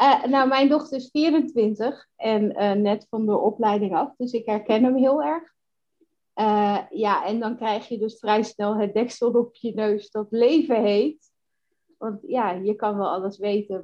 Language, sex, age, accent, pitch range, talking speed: Dutch, female, 30-49, Dutch, 200-250 Hz, 185 wpm